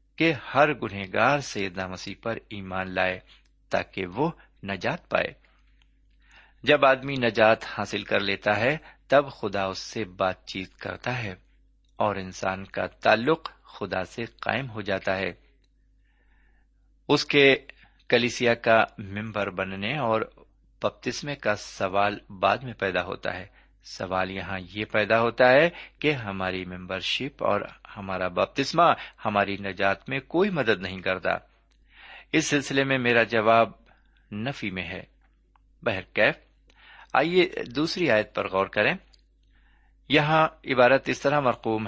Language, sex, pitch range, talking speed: Urdu, male, 95-135 Hz, 135 wpm